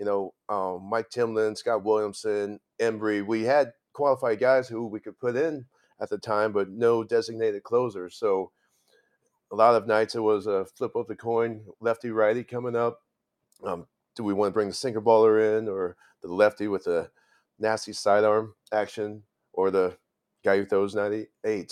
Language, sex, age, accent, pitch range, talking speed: English, male, 40-59, American, 100-115 Hz, 175 wpm